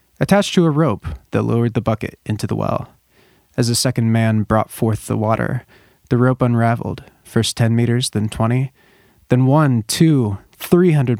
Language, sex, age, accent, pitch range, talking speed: English, male, 20-39, American, 110-145 Hz, 165 wpm